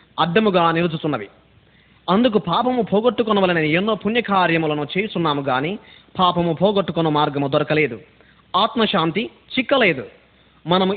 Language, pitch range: Telugu, 155-215 Hz